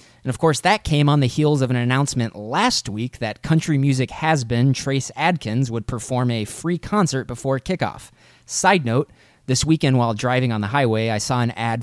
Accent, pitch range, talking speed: American, 110-140 Hz, 200 wpm